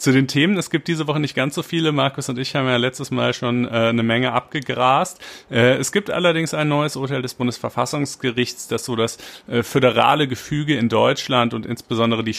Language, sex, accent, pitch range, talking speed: German, male, German, 110-135 Hz, 210 wpm